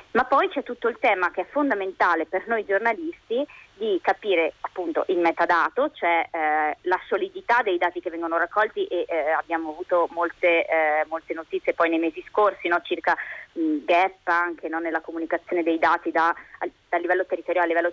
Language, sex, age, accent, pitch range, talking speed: Italian, female, 20-39, native, 165-220 Hz, 185 wpm